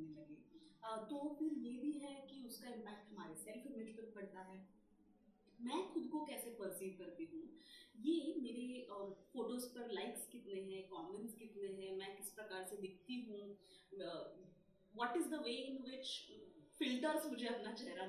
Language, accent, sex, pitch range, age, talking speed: Hindi, native, female, 200-285 Hz, 30-49, 155 wpm